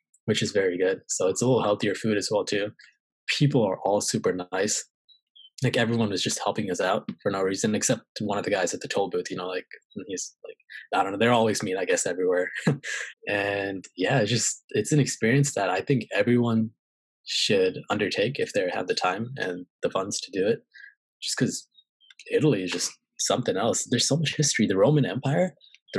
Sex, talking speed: male, 210 wpm